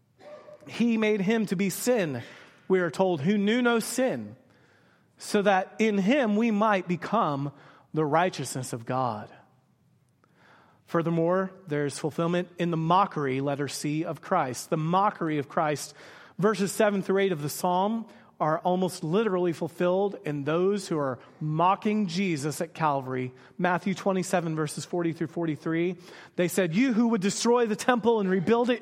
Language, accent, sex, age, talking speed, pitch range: English, American, male, 40-59, 155 wpm, 165-220 Hz